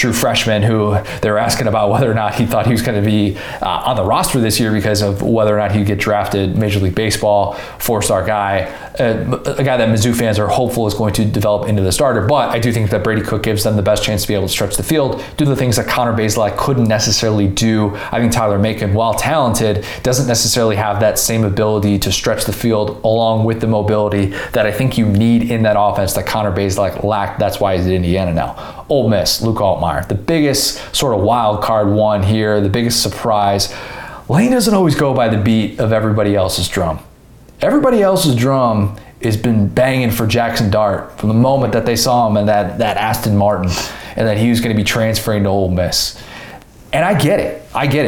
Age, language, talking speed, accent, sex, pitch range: 20-39, English, 225 wpm, American, male, 105-115 Hz